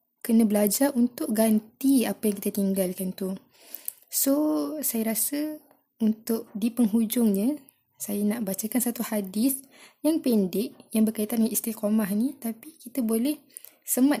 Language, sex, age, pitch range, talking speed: Malay, female, 20-39, 205-255 Hz, 130 wpm